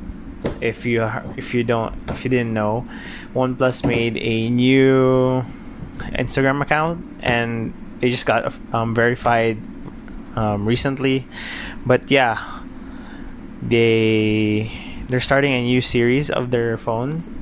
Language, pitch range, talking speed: English, 110-125 Hz, 120 wpm